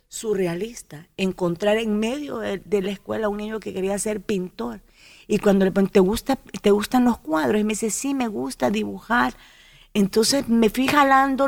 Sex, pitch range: female, 185-210 Hz